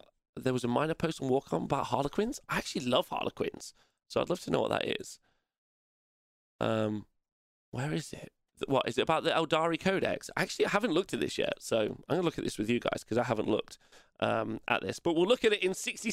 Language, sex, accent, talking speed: English, male, British, 235 wpm